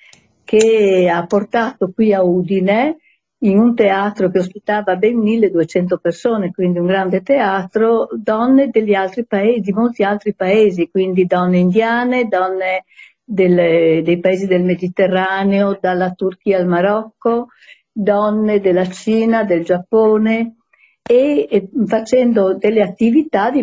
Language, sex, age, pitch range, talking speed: Italian, female, 50-69, 185-225 Hz, 115 wpm